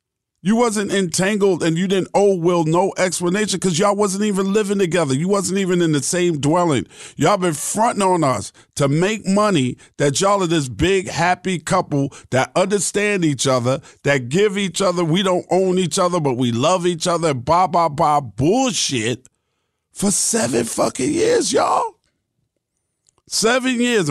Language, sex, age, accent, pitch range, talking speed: English, male, 50-69, American, 140-190 Hz, 165 wpm